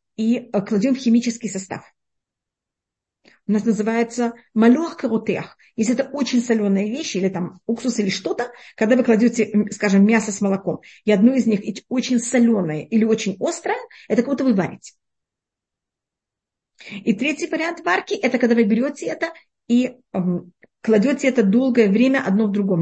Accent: native